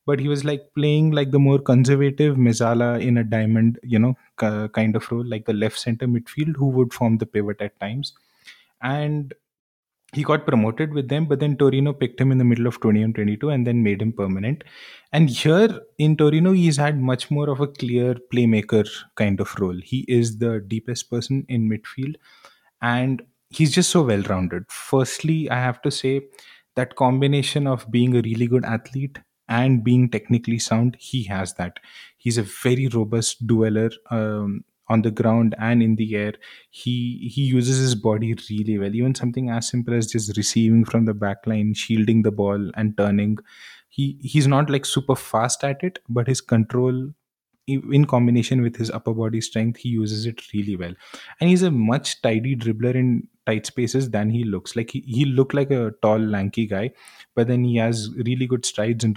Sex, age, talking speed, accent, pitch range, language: male, 20-39, 190 wpm, Indian, 110-135 Hz, English